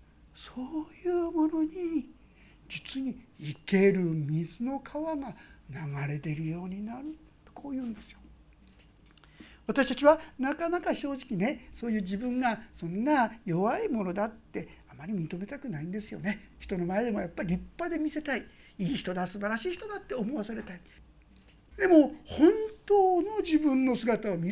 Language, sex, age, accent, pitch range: Japanese, male, 60-79, native, 205-315 Hz